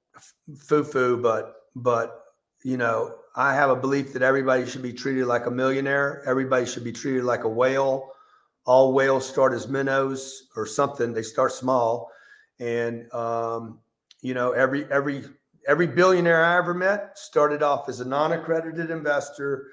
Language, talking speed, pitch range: English, 160 wpm, 130-160 Hz